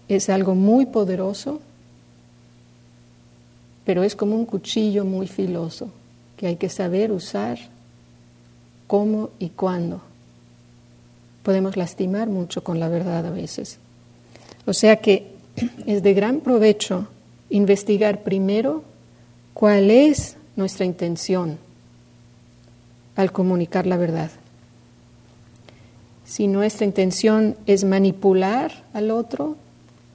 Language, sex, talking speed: English, female, 100 wpm